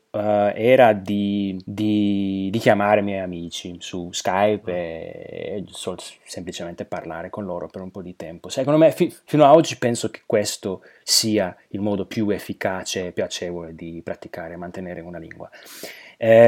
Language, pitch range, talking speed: Italian, 100-120 Hz, 170 wpm